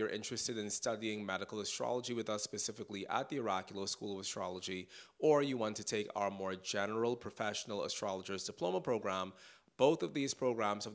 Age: 30-49